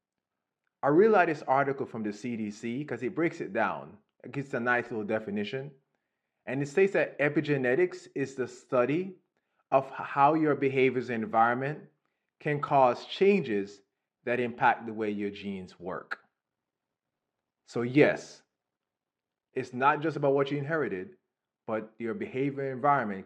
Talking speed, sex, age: 145 wpm, male, 20-39